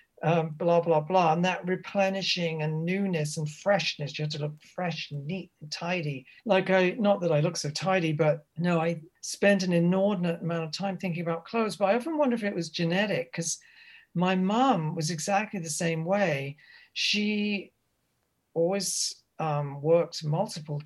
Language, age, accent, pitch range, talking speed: English, 50-69, British, 155-190 Hz, 175 wpm